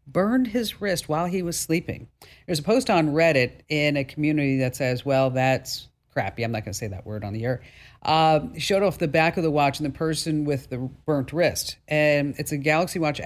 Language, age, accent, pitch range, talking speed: English, 50-69, American, 125-155 Hz, 225 wpm